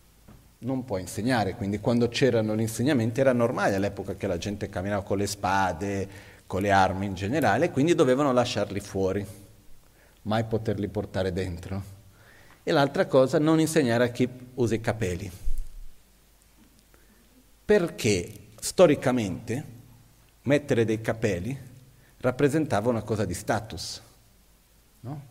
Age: 40-59